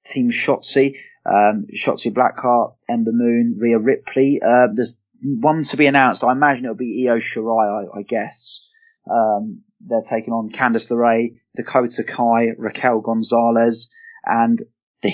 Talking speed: 145 wpm